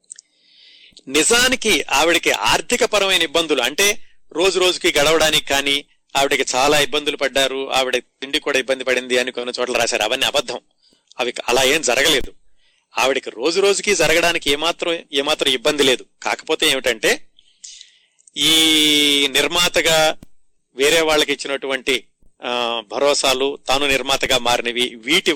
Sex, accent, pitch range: male, native, 125-165 Hz